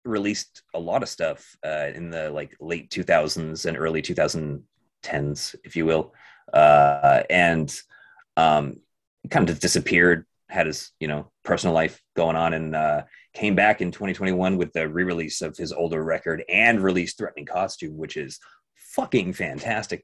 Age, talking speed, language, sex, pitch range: 30-49, 155 wpm, English, male, 80-125 Hz